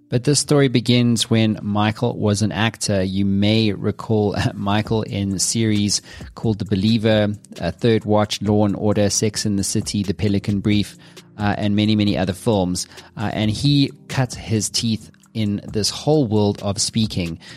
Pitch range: 100-115 Hz